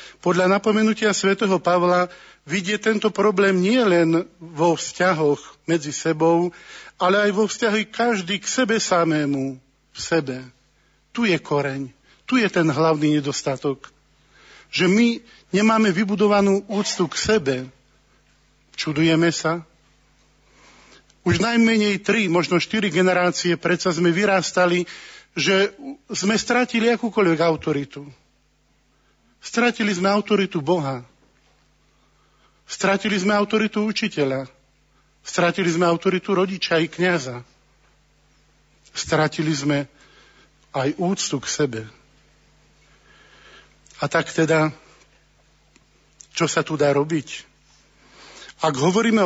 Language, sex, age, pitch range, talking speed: Slovak, male, 50-69, 155-205 Hz, 100 wpm